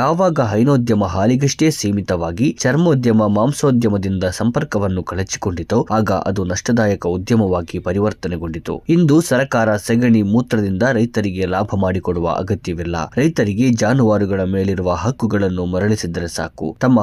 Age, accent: 20-39, native